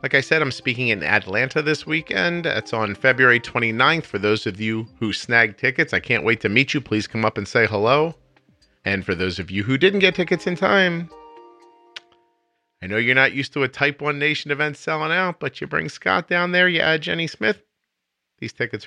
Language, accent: English, American